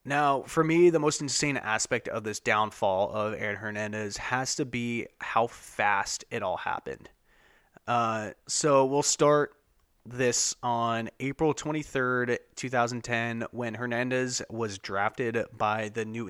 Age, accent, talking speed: 30-49, American, 135 wpm